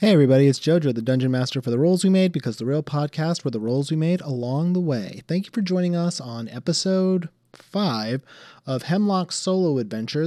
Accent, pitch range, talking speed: American, 120-165 Hz, 210 wpm